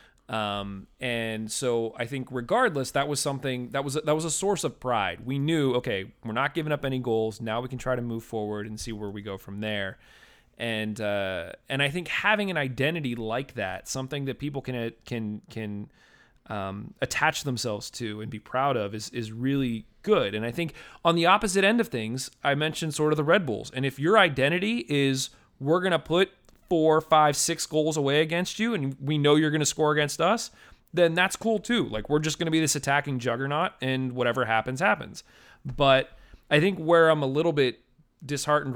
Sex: male